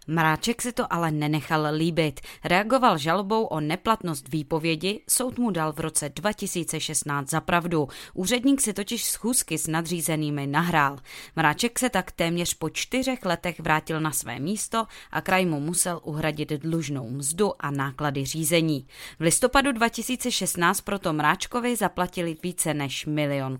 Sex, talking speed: female, 140 wpm